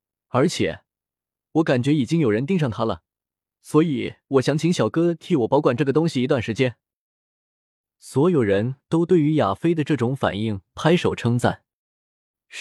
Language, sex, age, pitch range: Chinese, male, 20-39, 110-160 Hz